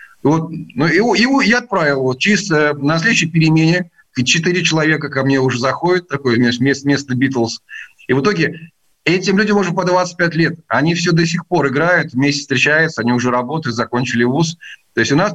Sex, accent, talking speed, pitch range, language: male, native, 195 wpm, 130-180 Hz, Russian